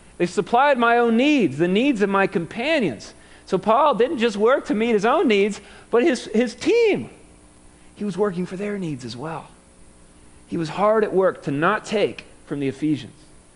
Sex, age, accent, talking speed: male, 40-59, American, 190 wpm